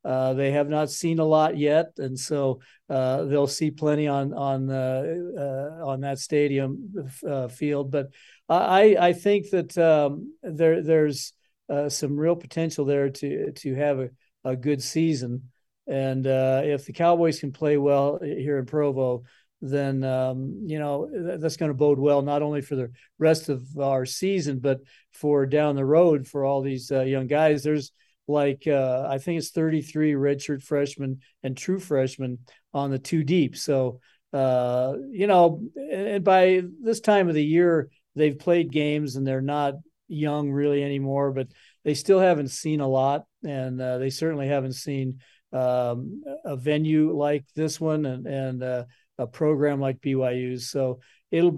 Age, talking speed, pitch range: 50-69, 170 wpm, 135-155 Hz